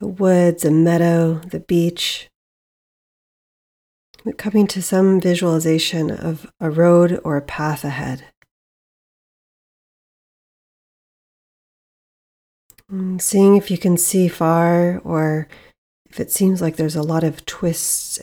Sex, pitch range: female, 160-185 Hz